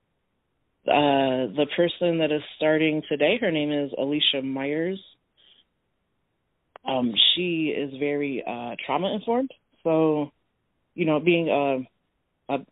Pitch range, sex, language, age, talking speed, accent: 130-160 Hz, female, English, 30-49, 120 wpm, American